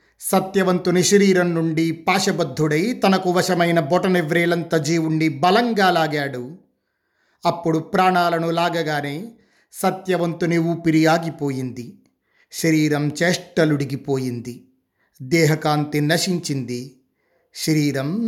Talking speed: 70 wpm